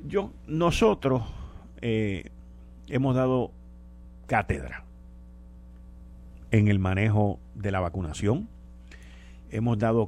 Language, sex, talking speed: Spanish, male, 85 wpm